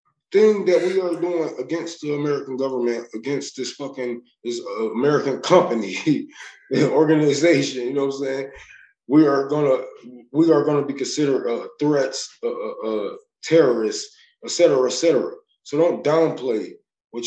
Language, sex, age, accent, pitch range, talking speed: English, male, 20-39, American, 125-205 Hz, 155 wpm